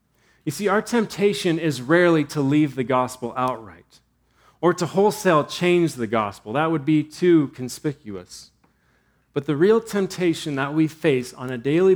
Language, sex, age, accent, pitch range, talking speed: English, male, 30-49, American, 130-165 Hz, 160 wpm